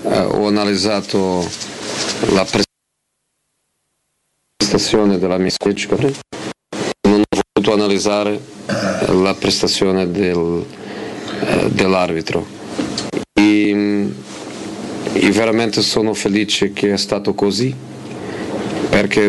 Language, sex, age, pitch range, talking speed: Italian, male, 40-59, 100-105 Hz, 80 wpm